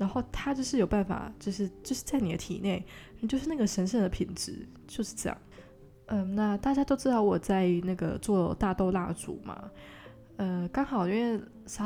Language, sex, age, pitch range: Chinese, female, 20-39, 180-220 Hz